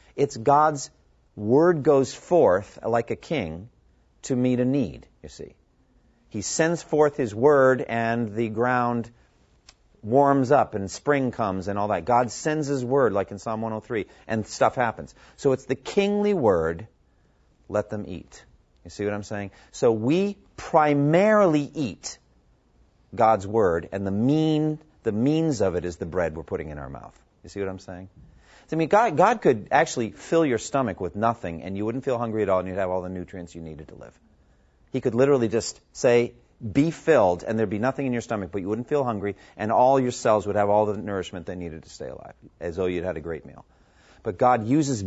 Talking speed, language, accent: 200 wpm, English, American